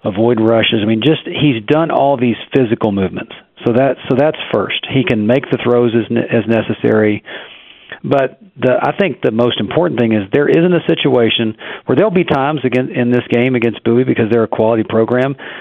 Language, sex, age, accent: English, male, 40-59, American